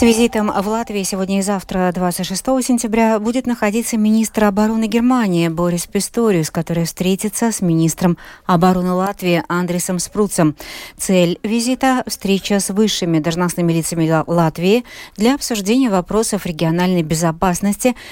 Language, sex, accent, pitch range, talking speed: Russian, female, native, 170-215 Hz, 125 wpm